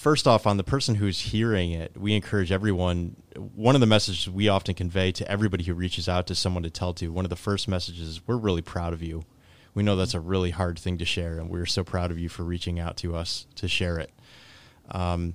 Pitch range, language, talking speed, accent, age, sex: 90-110 Hz, English, 245 wpm, American, 20-39, male